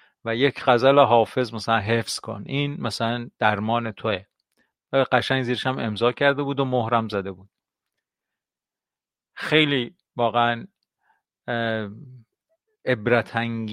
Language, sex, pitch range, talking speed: Persian, male, 115-135 Hz, 110 wpm